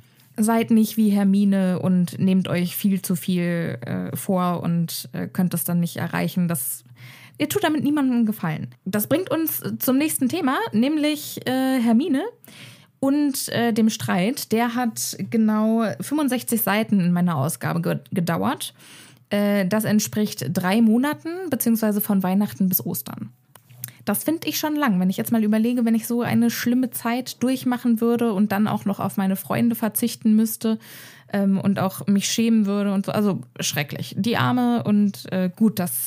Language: German